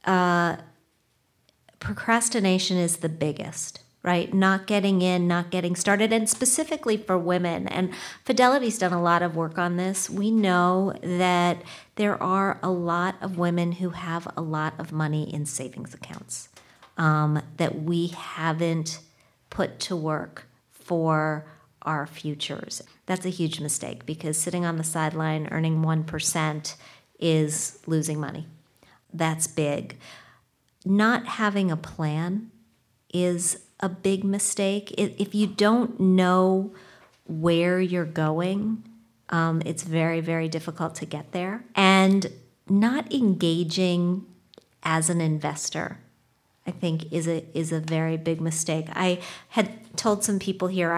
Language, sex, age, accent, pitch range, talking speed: English, female, 40-59, American, 160-190 Hz, 130 wpm